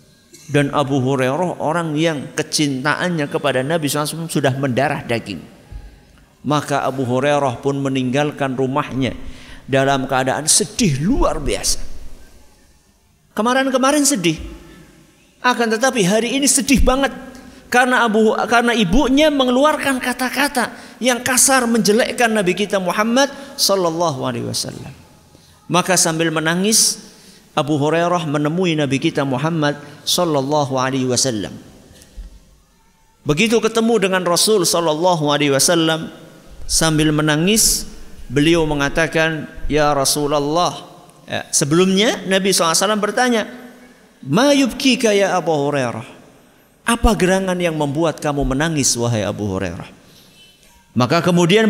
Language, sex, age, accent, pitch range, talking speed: Indonesian, male, 50-69, native, 145-220 Hz, 100 wpm